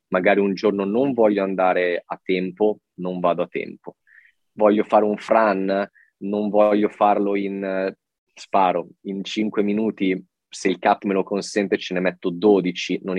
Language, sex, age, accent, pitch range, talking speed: Italian, male, 20-39, native, 95-110 Hz, 160 wpm